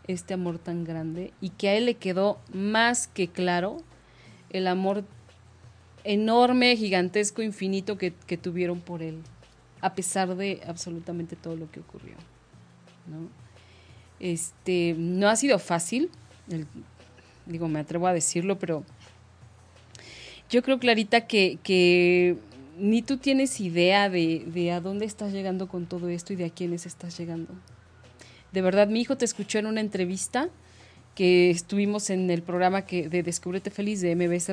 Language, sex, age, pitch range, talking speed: Spanish, female, 30-49, 170-205 Hz, 155 wpm